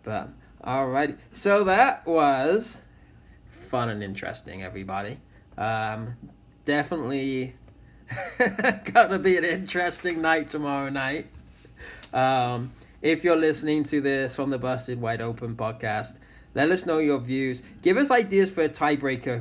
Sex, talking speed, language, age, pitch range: male, 130 wpm, English, 20-39, 120-155 Hz